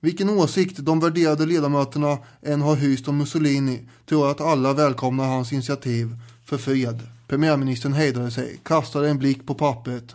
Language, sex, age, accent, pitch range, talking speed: English, male, 20-39, Swedish, 135-165 Hz, 155 wpm